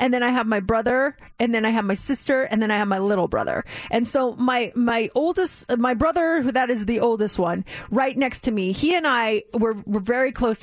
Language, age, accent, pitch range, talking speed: English, 30-49, American, 195-250 Hz, 235 wpm